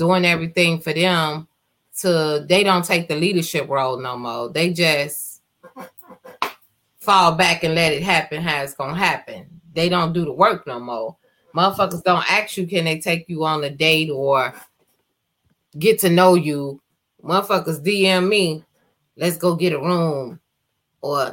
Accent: American